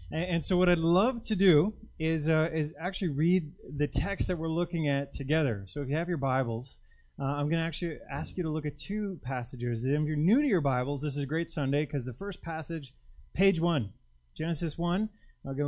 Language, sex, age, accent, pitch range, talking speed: English, male, 20-39, American, 115-165 Hz, 220 wpm